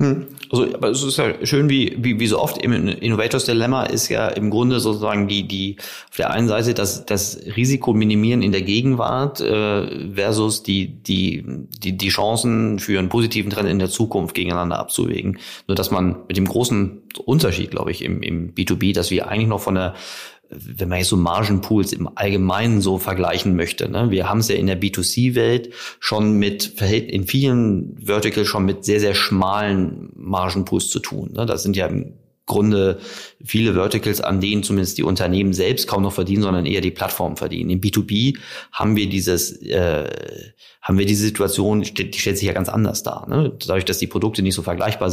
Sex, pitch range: male, 95-110 Hz